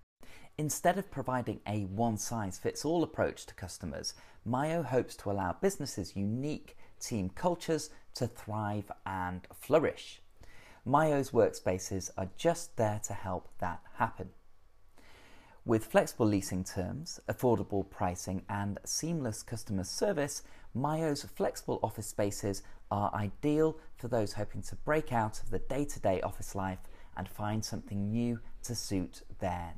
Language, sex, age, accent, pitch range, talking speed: English, male, 30-49, British, 95-125 Hz, 125 wpm